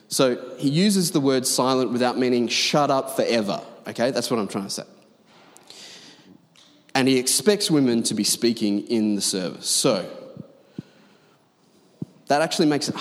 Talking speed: 150 wpm